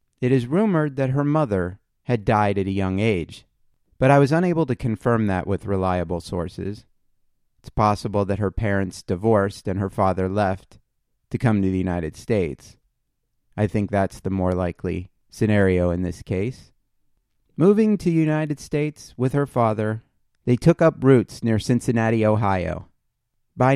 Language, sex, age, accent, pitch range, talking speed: English, male, 30-49, American, 100-130 Hz, 160 wpm